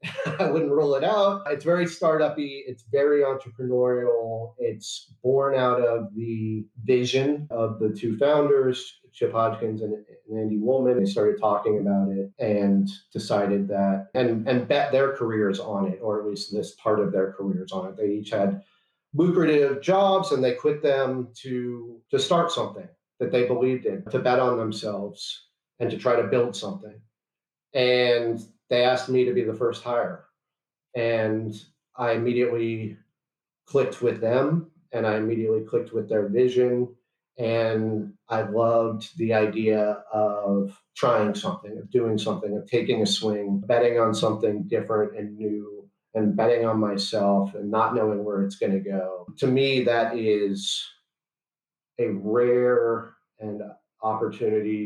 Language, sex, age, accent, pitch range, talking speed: English, male, 40-59, American, 105-125 Hz, 155 wpm